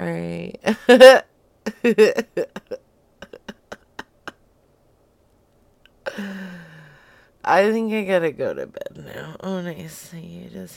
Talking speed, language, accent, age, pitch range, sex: 65 wpm, English, American, 30-49, 160-215 Hz, female